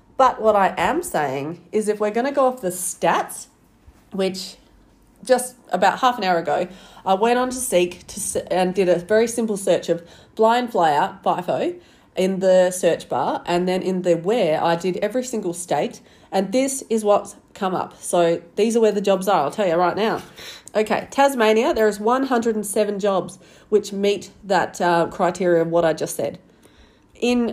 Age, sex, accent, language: 30-49, female, Australian, English